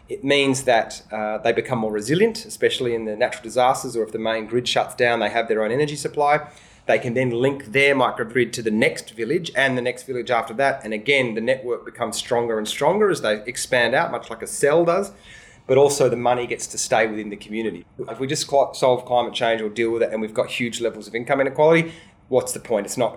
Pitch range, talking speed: 110-125 Hz, 240 wpm